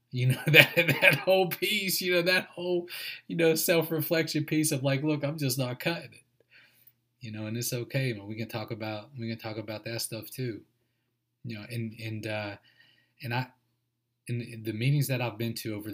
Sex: male